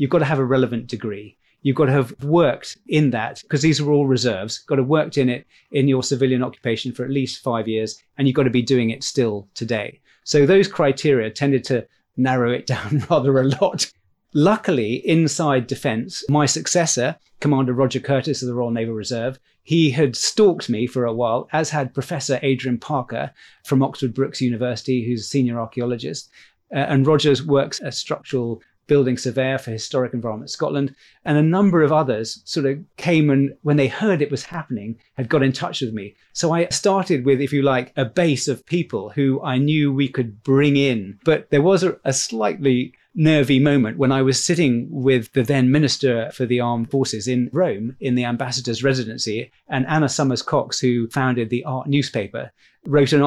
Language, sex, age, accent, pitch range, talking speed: English, male, 30-49, British, 125-145 Hz, 195 wpm